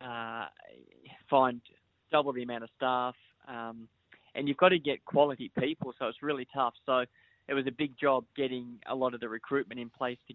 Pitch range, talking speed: 120-135 Hz, 195 wpm